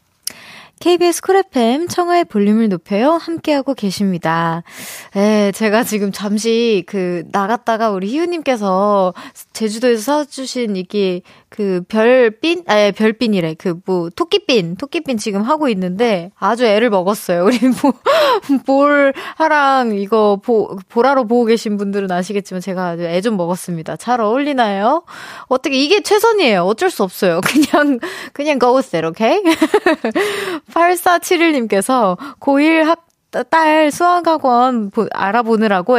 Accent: native